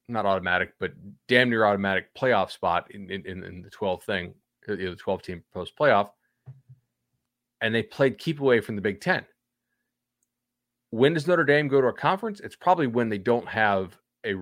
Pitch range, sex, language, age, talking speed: 95-125 Hz, male, English, 30-49, 175 wpm